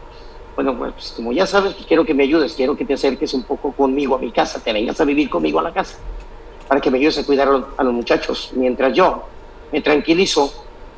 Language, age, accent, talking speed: Spanish, 50-69, Mexican, 235 wpm